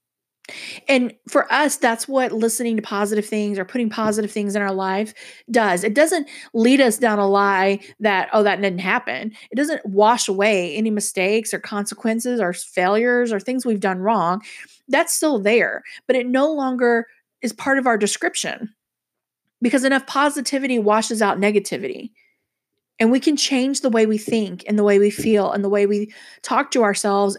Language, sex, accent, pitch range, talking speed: English, female, American, 200-245 Hz, 180 wpm